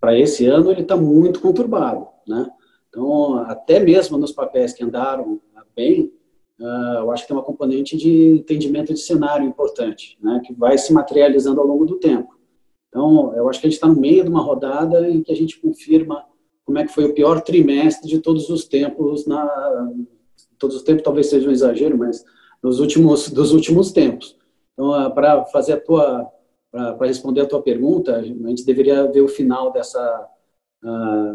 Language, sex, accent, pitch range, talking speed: Portuguese, male, Brazilian, 135-215 Hz, 185 wpm